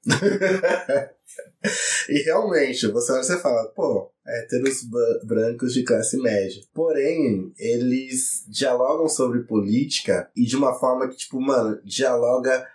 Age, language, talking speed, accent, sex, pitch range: 20-39, Portuguese, 120 wpm, Brazilian, male, 105-135 Hz